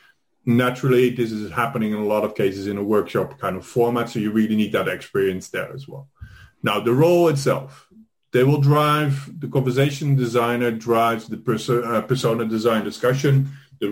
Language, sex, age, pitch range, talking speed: English, male, 30-49, 110-135 Hz, 175 wpm